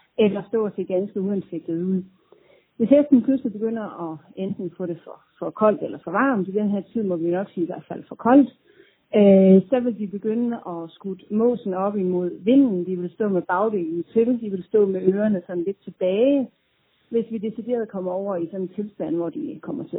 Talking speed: 220 wpm